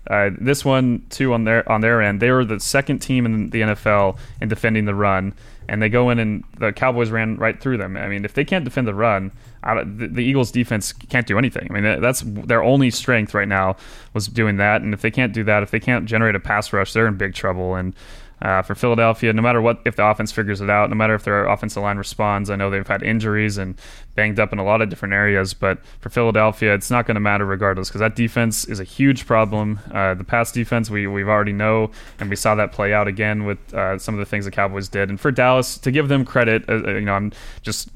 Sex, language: male, English